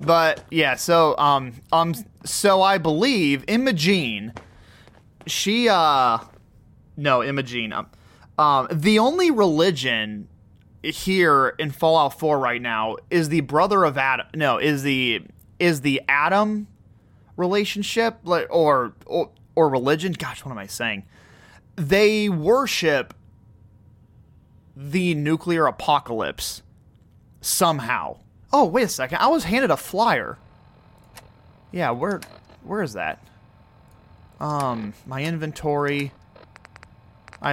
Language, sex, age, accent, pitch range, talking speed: English, male, 30-49, American, 105-165 Hz, 110 wpm